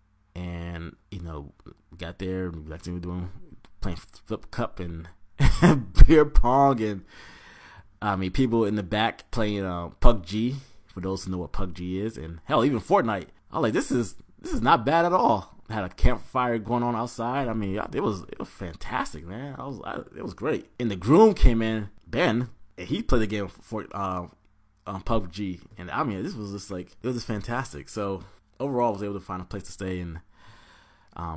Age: 20-39